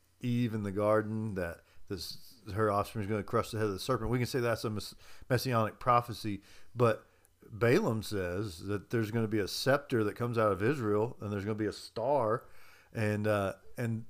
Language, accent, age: English, American, 50-69